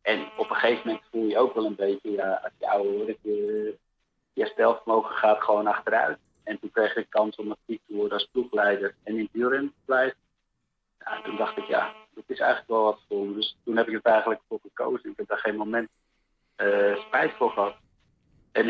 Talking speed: 220 wpm